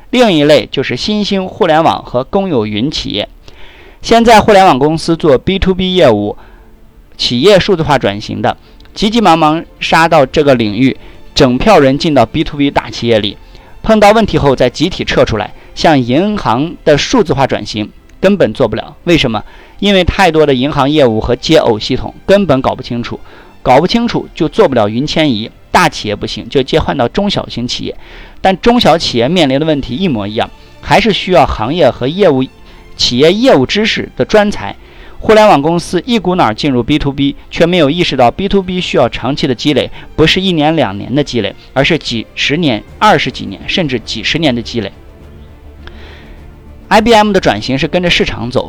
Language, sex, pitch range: Chinese, male, 120-180 Hz